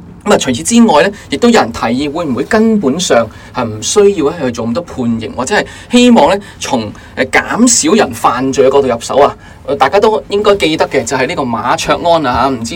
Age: 20-39